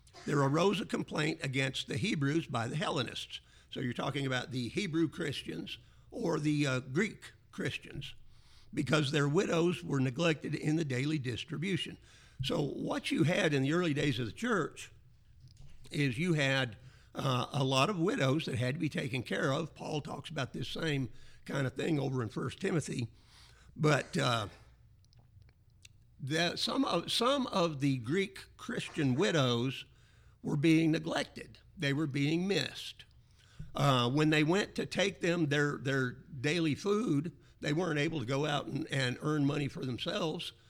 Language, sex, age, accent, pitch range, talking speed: English, male, 50-69, American, 125-160 Hz, 160 wpm